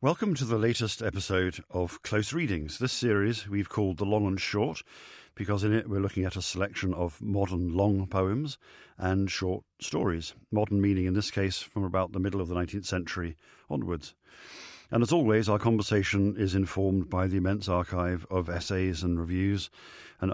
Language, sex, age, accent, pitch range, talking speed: English, male, 50-69, British, 90-105 Hz, 180 wpm